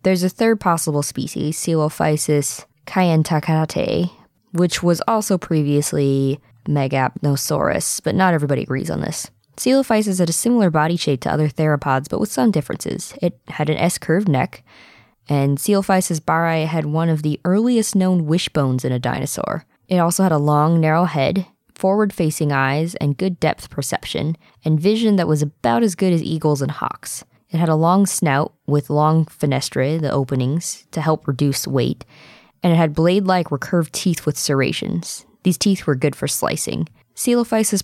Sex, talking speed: female, 160 wpm